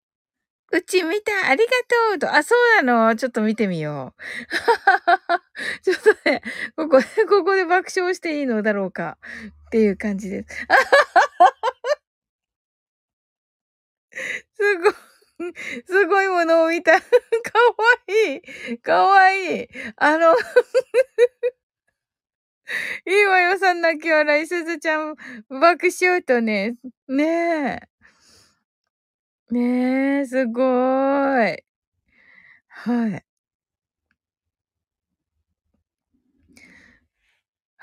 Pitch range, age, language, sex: 230-380 Hz, 20-39, Japanese, female